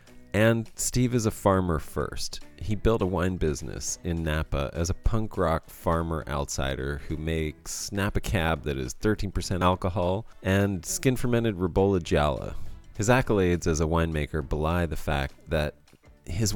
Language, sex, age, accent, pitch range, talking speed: English, male, 30-49, American, 75-100 Hz, 150 wpm